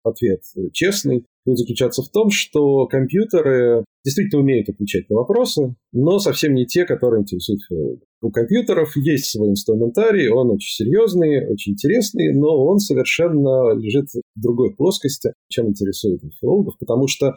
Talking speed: 145 wpm